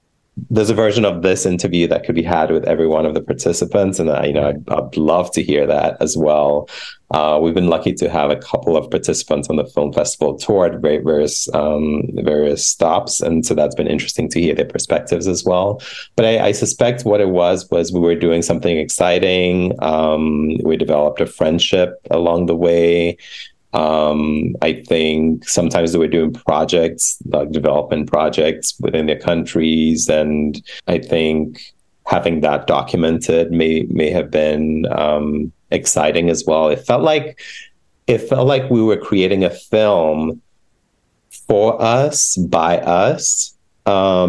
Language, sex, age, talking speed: English, male, 30-49, 170 wpm